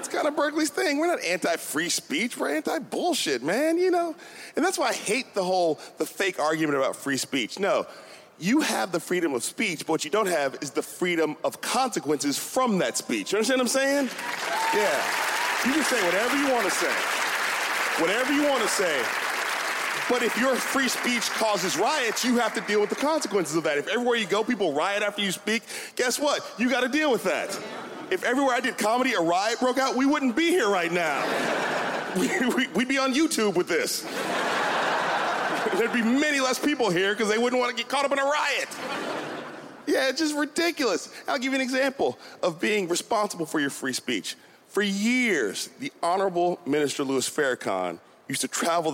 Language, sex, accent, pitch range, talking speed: English, male, American, 170-280 Hz, 200 wpm